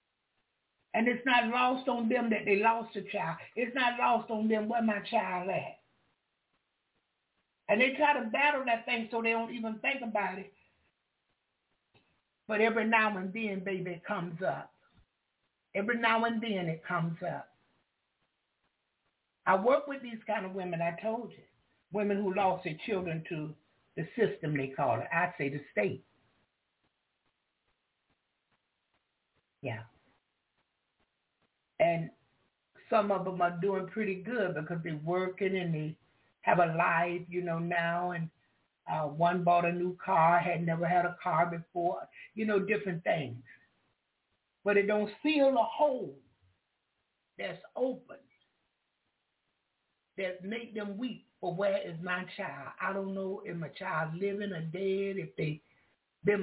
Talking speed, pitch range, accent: 150 wpm, 175-225 Hz, American